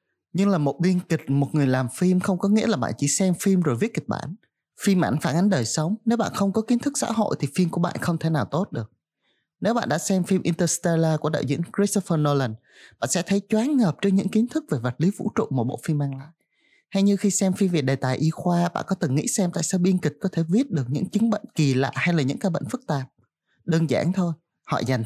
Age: 20-39